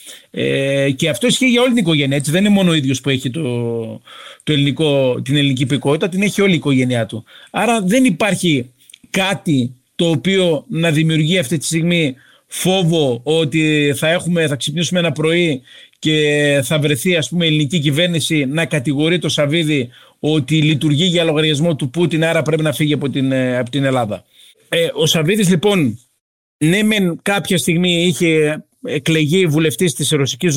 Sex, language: male, Greek